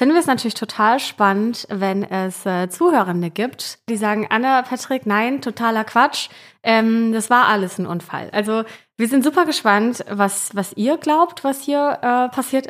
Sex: female